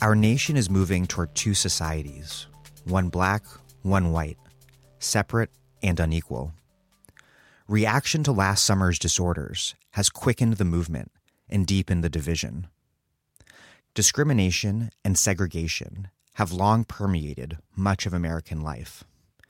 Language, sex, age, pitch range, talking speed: English, male, 30-49, 85-105 Hz, 115 wpm